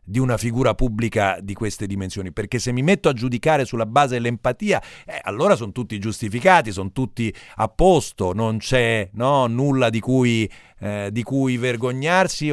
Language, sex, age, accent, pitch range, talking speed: Italian, male, 40-59, native, 105-150 Hz, 160 wpm